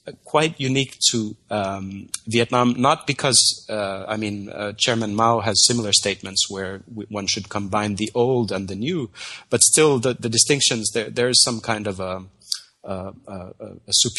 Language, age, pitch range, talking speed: English, 30-49, 100-120 Hz, 160 wpm